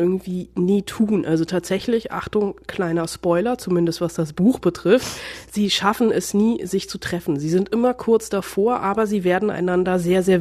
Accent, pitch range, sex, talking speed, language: German, 170-205 Hz, female, 180 wpm, German